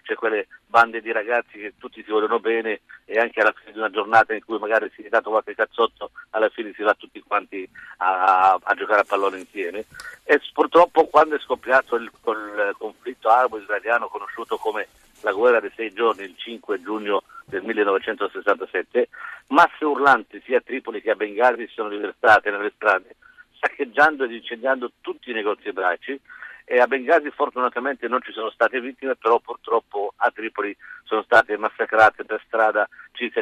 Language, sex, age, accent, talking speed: Italian, male, 50-69, native, 175 wpm